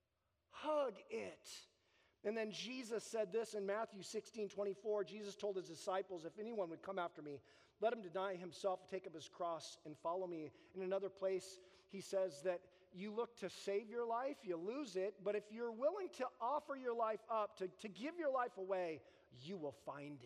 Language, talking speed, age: English, 195 wpm, 40-59